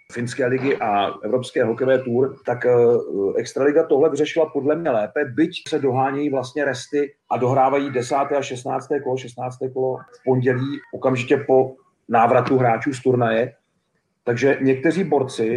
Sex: male